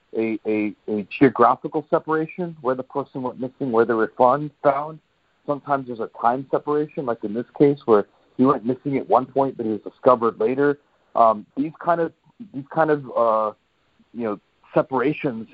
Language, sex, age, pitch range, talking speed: English, male, 40-59, 110-140 Hz, 180 wpm